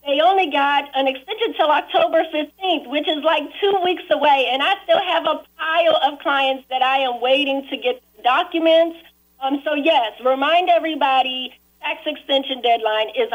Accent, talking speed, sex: American, 175 wpm, female